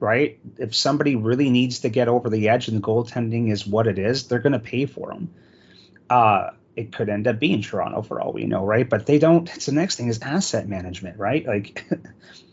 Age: 30-49